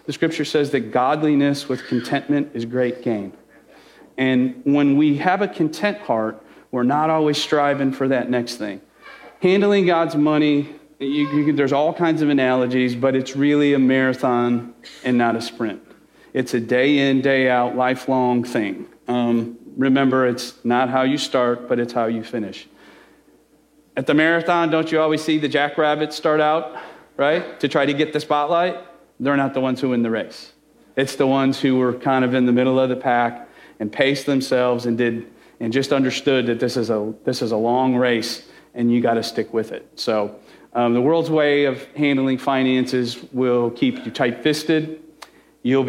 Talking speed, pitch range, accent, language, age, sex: 180 wpm, 120-145 Hz, American, English, 40-59, male